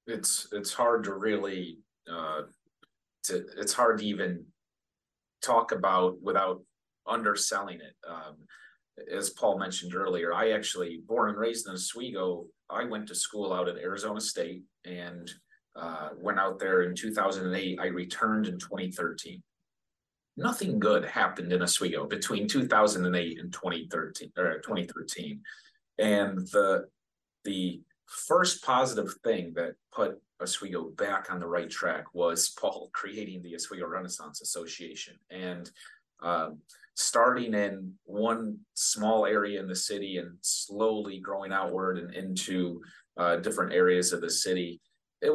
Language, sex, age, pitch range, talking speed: English, male, 30-49, 90-110 Hz, 135 wpm